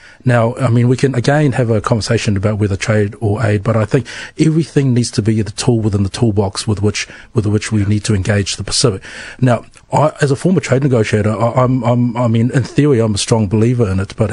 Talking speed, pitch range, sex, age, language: 240 wpm, 110-130 Hz, male, 40-59, English